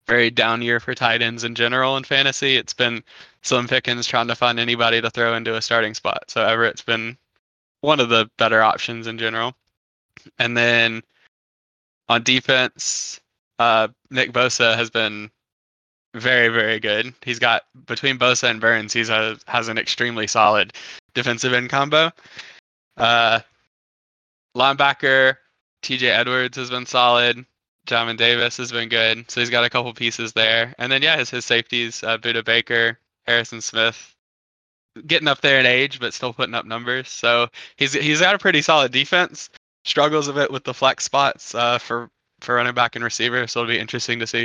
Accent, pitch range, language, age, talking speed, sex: American, 115-130 Hz, English, 10-29, 175 wpm, male